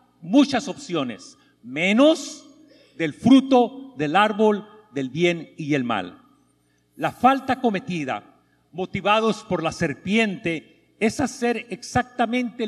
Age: 50-69